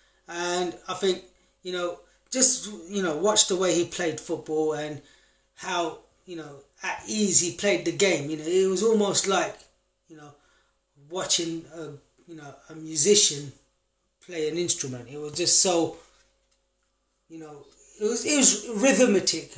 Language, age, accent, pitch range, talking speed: English, 20-39, British, 155-195 Hz, 155 wpm